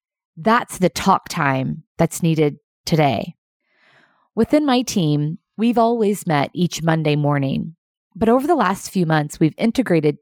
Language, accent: English, American